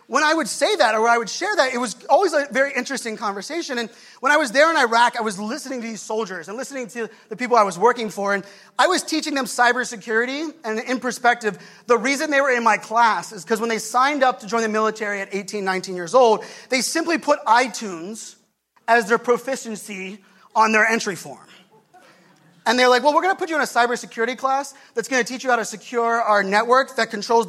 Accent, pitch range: American, 215-260 Hz